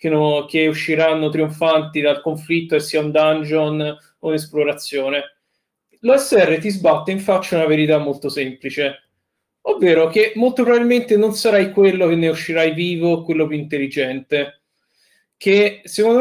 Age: 20-39